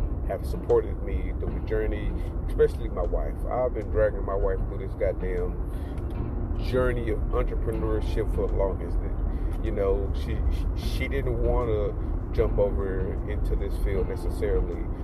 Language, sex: English, male